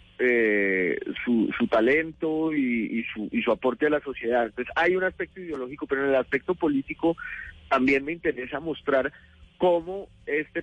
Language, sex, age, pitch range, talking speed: Spanish, male, 40-59, 120-160 Hz, 170 wpm